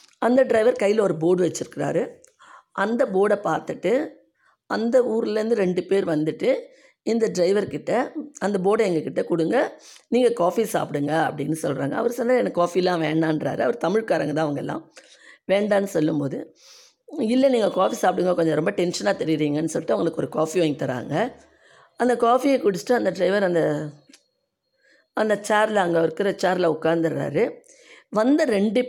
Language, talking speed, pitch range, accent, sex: Tamil, 135 wpm, 170-235 Hz, native, female